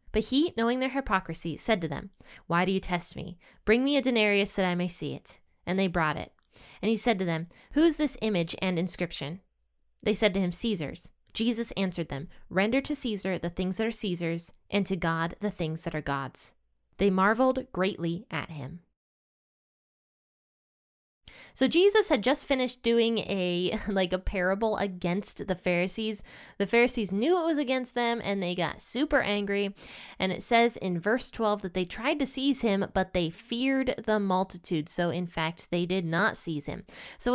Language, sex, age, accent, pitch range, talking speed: English, female, 20-39, American, 175-230 Hz, 190 wpm